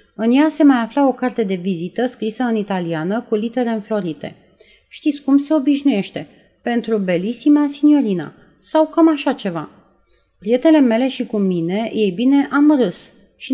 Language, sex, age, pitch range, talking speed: Romanian, female, 30-49, 190-265 Hz, 160 wpm